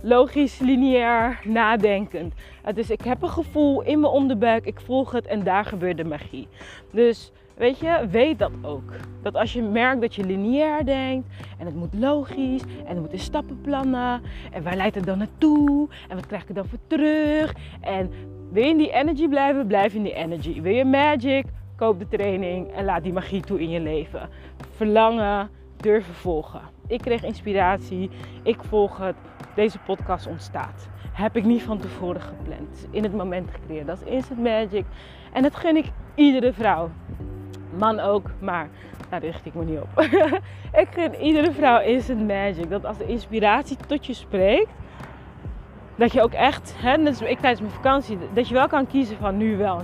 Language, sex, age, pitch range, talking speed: Dutch, female, 20-39, 190-280 Hz, 185 wpm